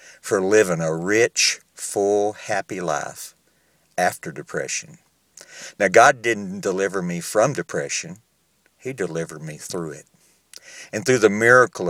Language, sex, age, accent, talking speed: English, male, 50-69, American, 125 wpm